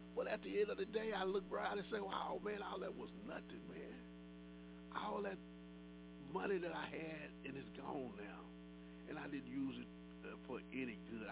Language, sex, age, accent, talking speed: English, male, 50-69, American, 200 wpm